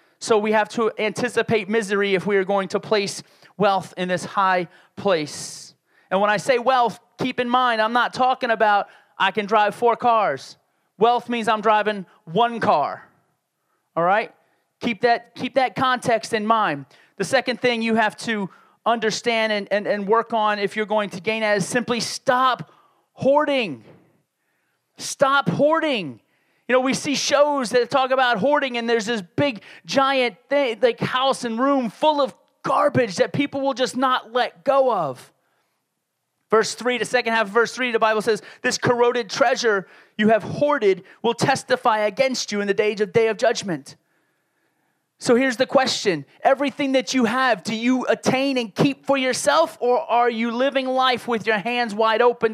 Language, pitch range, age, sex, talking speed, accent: English, 210-255 Hz, 30-49, male, 175 wpm, American